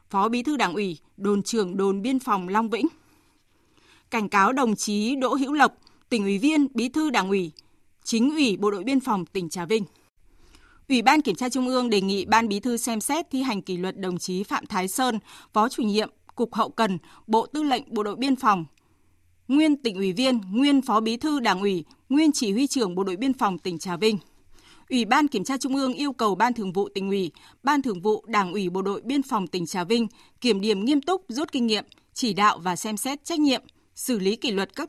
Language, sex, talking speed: Vietnamese, female, 230 wpm